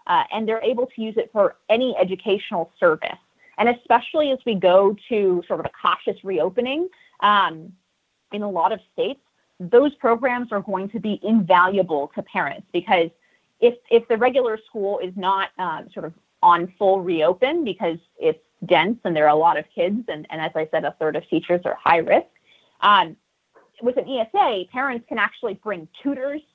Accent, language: American, English